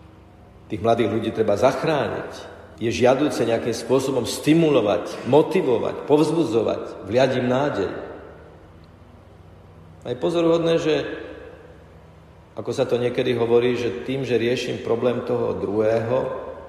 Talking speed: 110 wpm